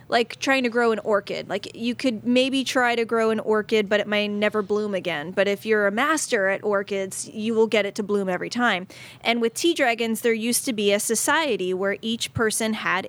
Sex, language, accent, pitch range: female, English, American, 205-240 Hz